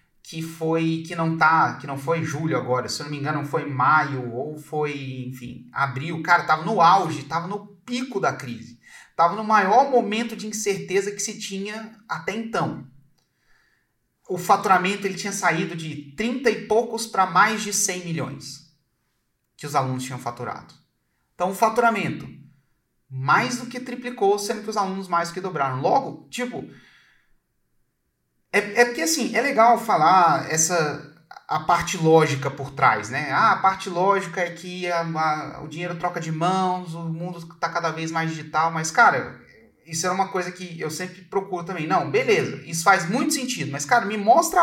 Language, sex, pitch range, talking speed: Portuguese, male, 150-205 Hz, 170 wpm